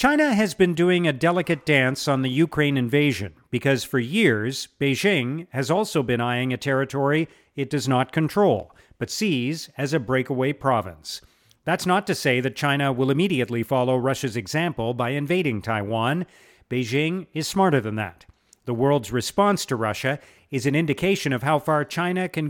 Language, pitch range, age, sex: English, 125-170 Hz, 40-59, male